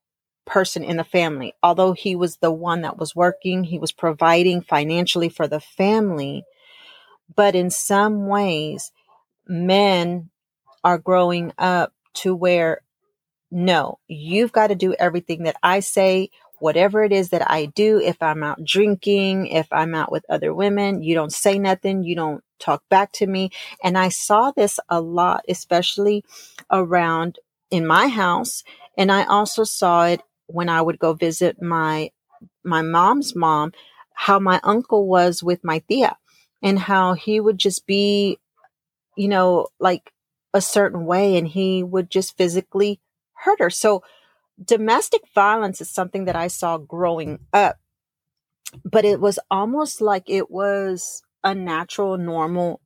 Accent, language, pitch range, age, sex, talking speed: American, English, 170-205 Hz, 40-59, female, 155 wpm